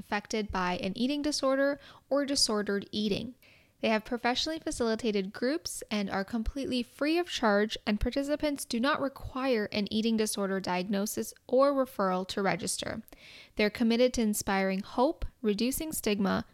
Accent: American